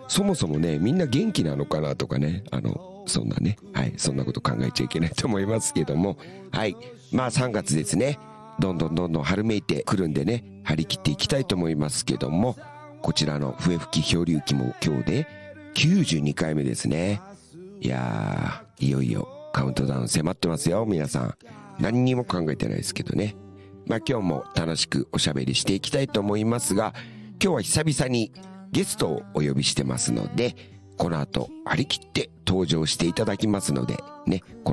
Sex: male